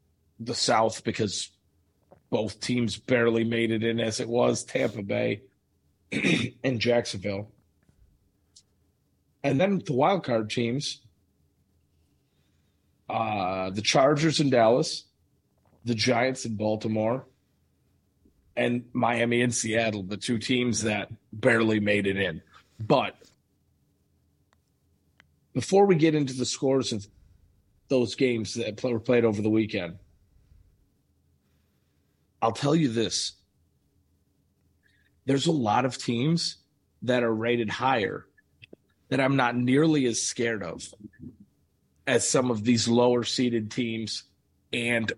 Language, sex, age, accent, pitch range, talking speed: English, male, 30-49, American, 95-125 Hz, 115 wpm